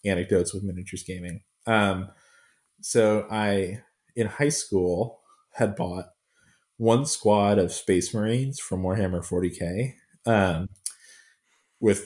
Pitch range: 90-110 Hz